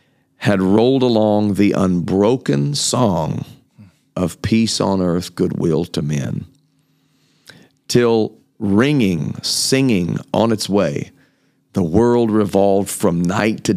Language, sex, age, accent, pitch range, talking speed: English, male, 50-69, American, 90-115 Hz, 110 wpm